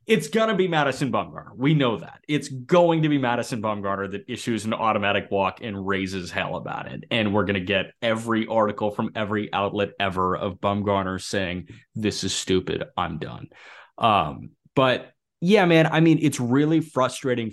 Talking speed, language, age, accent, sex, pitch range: 180 wpm, English, 30-49, American, male, 100-145 Hz